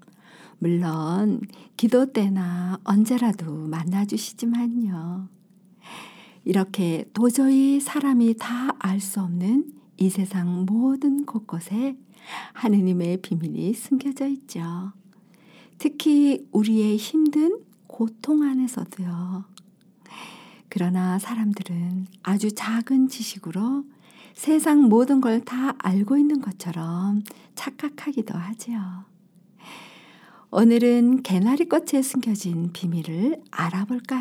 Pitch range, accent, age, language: 180-245 Hz, native, 50-69, Korean